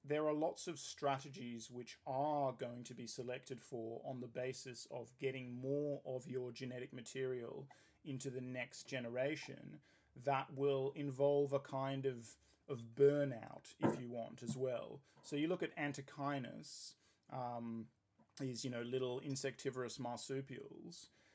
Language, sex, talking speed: English, male, 145 wpm